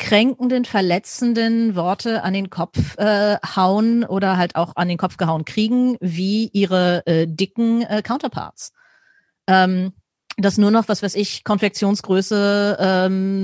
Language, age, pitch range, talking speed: German, 30-49, 190-230 Hz, 135 wpm